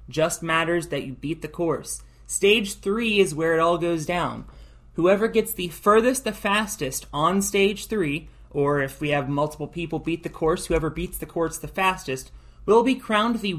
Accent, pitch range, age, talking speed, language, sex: American, 155-195 Hz, 30-49, 190 wpm, English, male